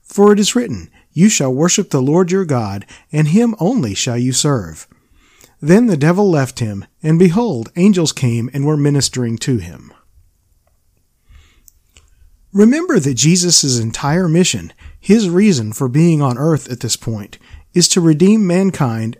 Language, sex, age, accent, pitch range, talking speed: English, male, 40-59, American, 120-175 Hz, 155 wpm